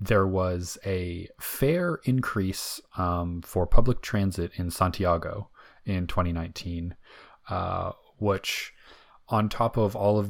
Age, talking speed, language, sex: 20-39, 115 wpm, English, male